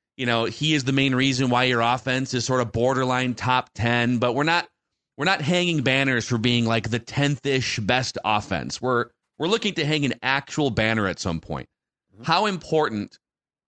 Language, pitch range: English, 100-130 Hz